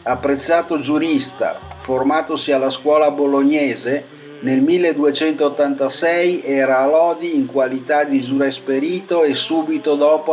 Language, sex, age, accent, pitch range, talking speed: Italian, male, 50-69, native, 135-170 Hz, 105 wpm